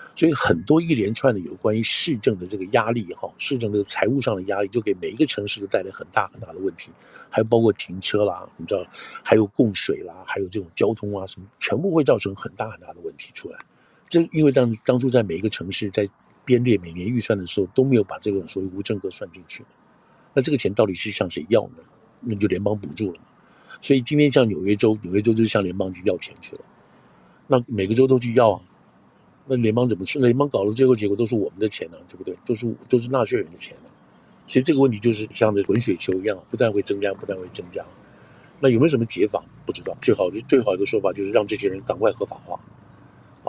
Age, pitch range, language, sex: 50-69, 100-130 Hz, Chinese, male